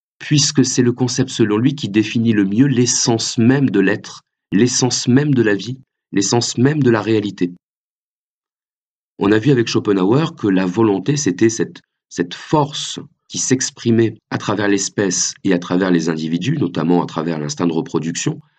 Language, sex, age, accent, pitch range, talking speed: French, male, 40-59, French, 100-140 Hz, 170 wpm